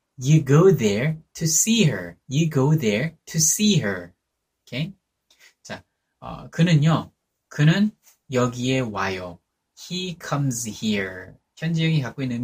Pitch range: 105-160 Hz